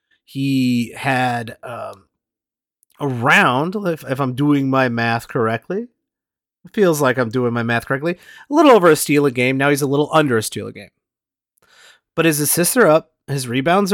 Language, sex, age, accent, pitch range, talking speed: English, male, 30-49, American, 120-165 Hz, 180 wpm